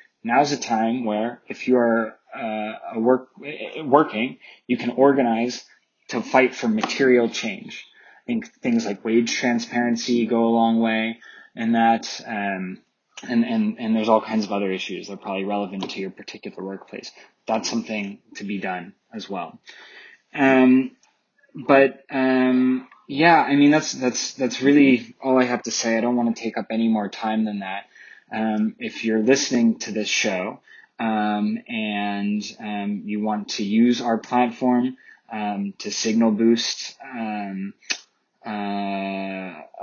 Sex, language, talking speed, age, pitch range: male, English, 155 wpm, 20-39, 110-130 Hz